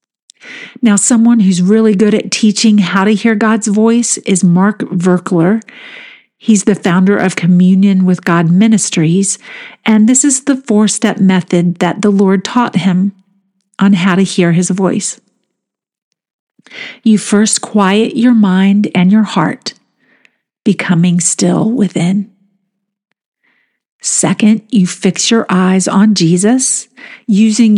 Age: 50-69